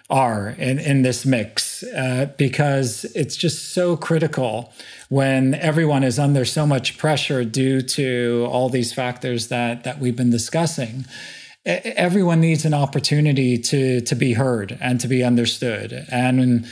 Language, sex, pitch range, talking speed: English, male, 125-145 Hz, 150 wpm